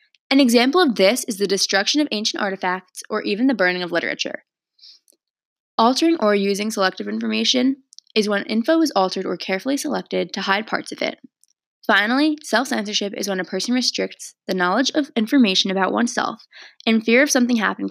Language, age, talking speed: English, 20-39, 175 wpm